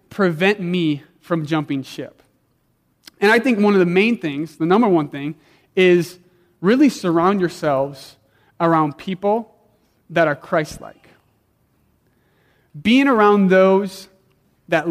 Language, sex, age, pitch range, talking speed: English, male, 30-49, 155-190 Hz, 120 wpm